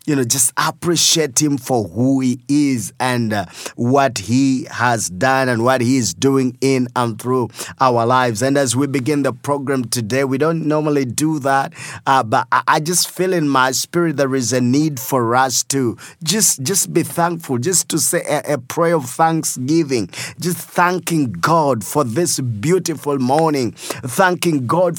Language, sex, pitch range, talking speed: English, male, 130-165 Hz, 180 wpm